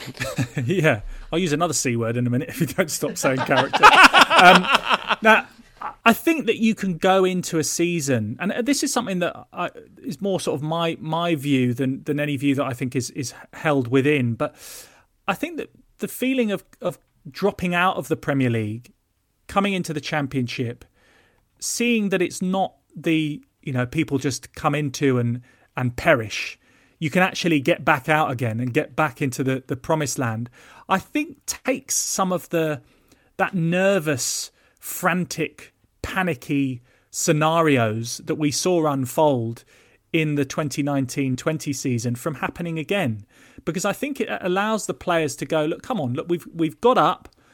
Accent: British